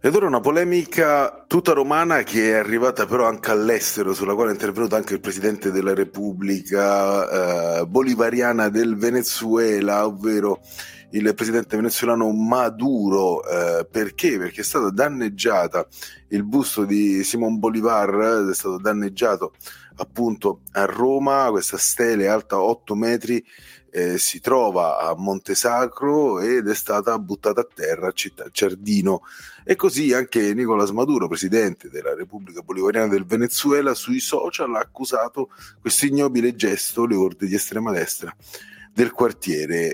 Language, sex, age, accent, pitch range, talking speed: Italian, male, 30-49, native, 100-125 Hz, 140 wpm